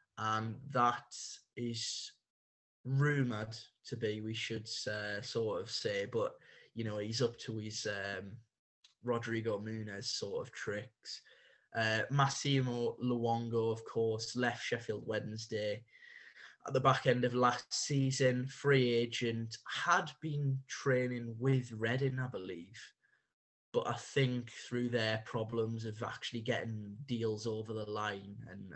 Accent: British